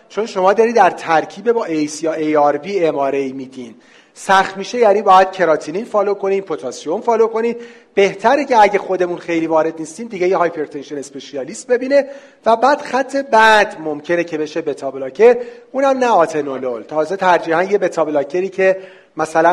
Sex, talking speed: male, 160 wpm